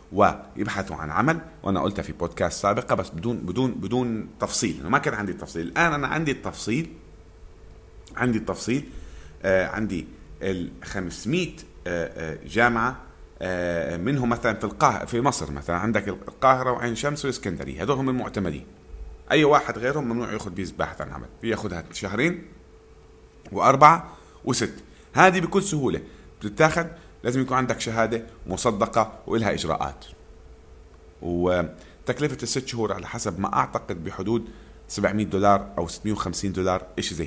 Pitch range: 80-120 Hz